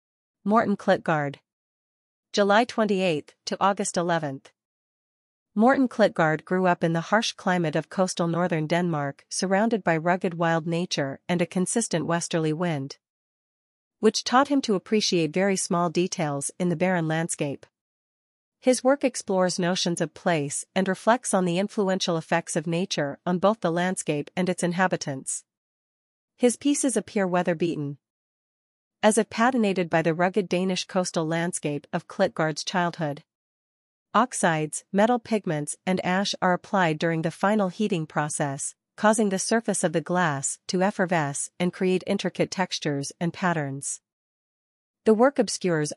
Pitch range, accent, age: 165-195 Hz, American, 40-59